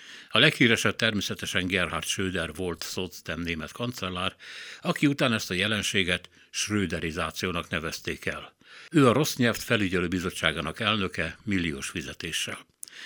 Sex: male